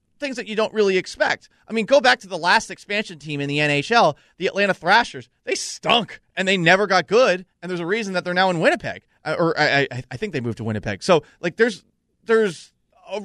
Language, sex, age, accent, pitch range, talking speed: English, male, 30-49, American, 140-210 Hz, 230 wpm